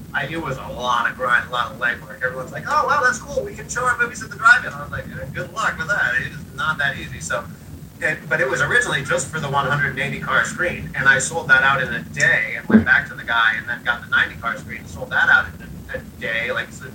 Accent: American